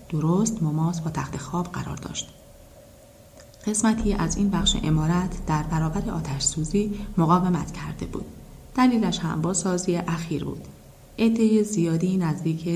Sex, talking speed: female, 125 wpm